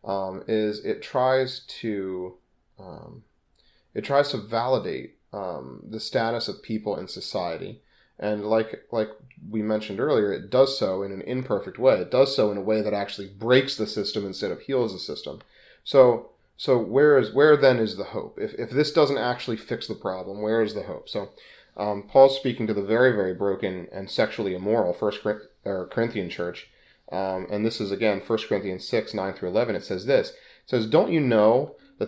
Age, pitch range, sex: 30-49, 105-135 Hz, male